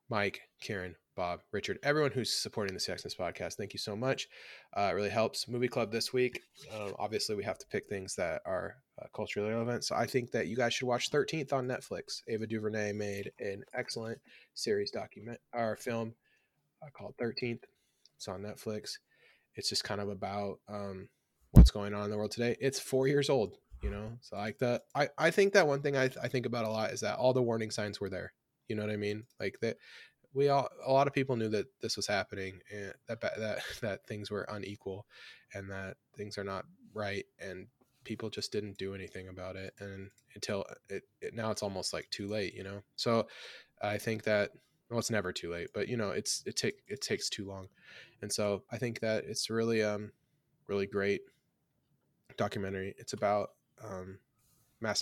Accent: American